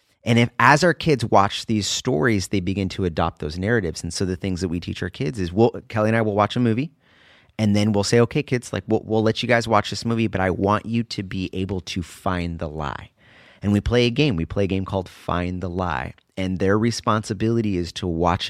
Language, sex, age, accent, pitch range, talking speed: English, male, 30-49, American, 90-115 Hz, 250 wpm